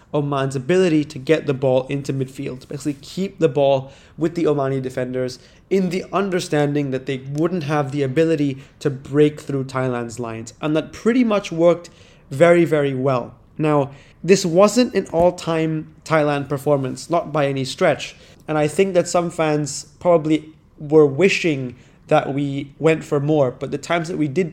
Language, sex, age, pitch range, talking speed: English, male, 20-39, 140-170 Hz, 170 wpm